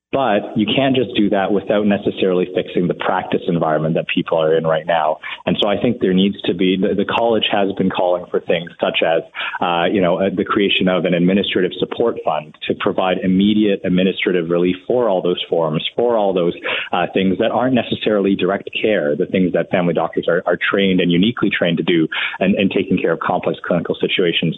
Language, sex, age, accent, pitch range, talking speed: English, male, 30-49, American, 90-100 Hz, 205 wpm